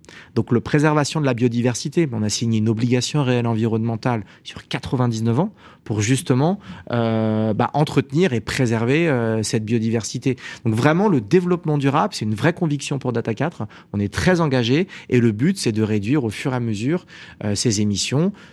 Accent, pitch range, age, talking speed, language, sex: French, 110-145 Hz, 30-49, 180 wpm, French, male